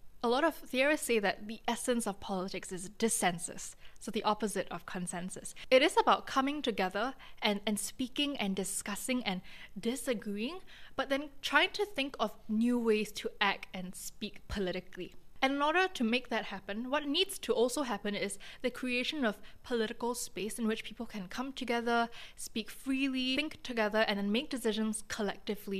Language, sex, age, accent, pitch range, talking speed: English, female, 10-29, Malaysian, 200-255 Hz, 175 wpm